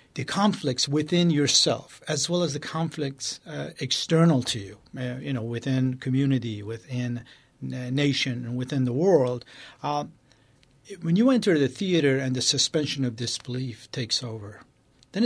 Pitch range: 125-150 Hz